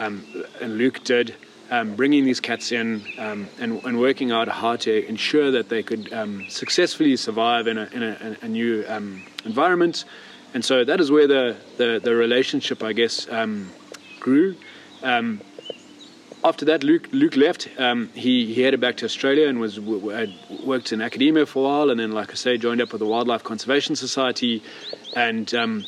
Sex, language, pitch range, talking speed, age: male, English, 115-145 Hz, 185 wpm, 30-49